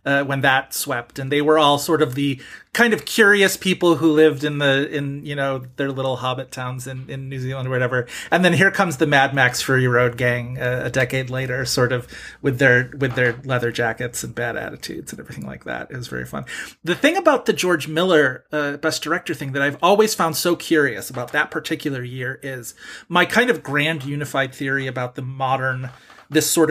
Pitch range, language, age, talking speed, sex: 135-160 Hz, English, 30-49, 220 wpm, male